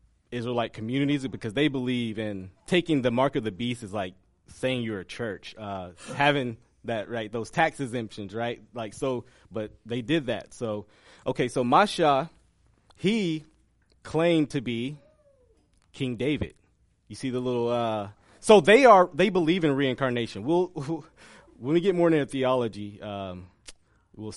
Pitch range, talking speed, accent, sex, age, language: 110-145 Hz, 155 wpm, American, male, 30-49, English